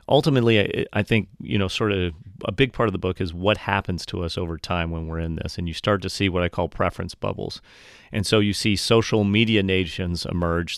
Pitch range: 90-110 Hz